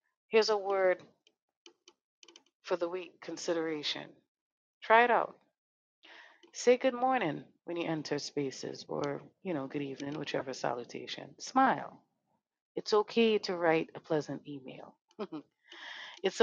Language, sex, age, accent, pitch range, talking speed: English, female, 40-59, American, 155-210 Hz, 120 wpm